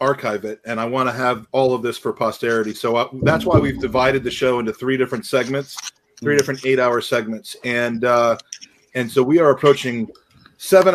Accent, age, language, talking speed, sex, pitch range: American, 40-59, English, 205 wpm, male, 120-145 Hz